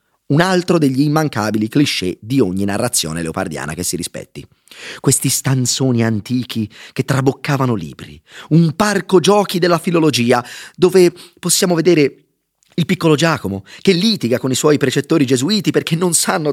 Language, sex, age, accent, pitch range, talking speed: Italian, male, 30-49, native, 110-180 Hz, 140 wpm